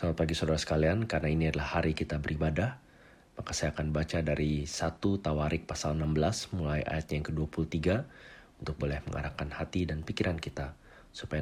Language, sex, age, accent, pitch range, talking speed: Indonesian, male, 40-59, native, 75-90 Hz, 165 wpm